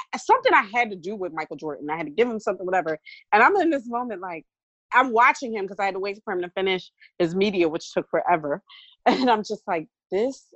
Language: English